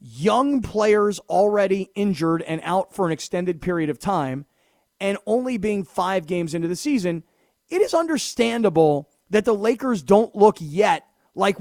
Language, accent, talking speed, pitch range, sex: English, American, 155 wpm, 180-245 Hz, male